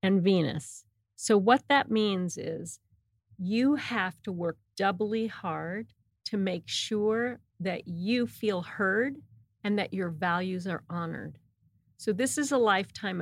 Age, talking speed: 40-59, 140 wpm